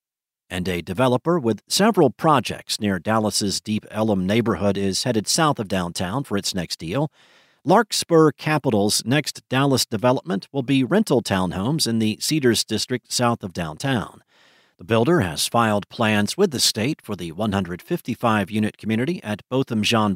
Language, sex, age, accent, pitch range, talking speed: English, male, 50-69, American, 105-140 Hz, 150 wpm